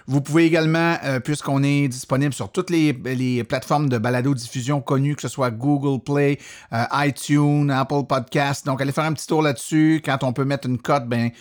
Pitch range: 130-165 Hz